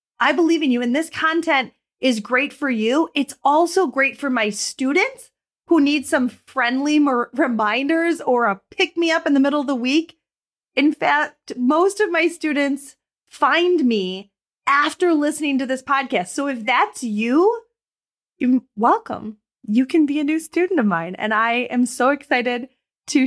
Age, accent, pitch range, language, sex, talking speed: 30-49, American, 245-330 Hz, English, female, 165 wpm